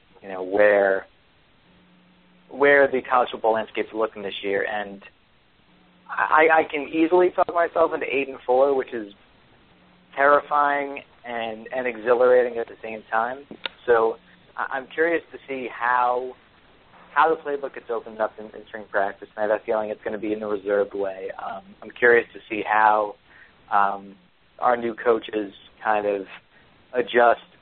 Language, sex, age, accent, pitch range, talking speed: English, male, 40-59, American, 100-135 Hz, 155 wpm